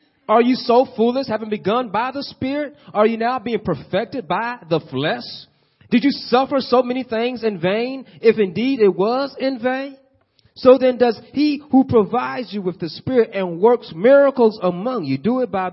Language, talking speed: English, 185 wpm